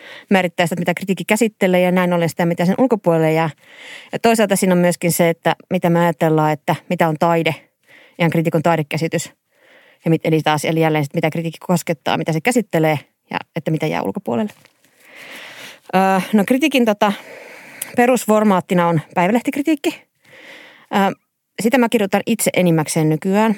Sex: female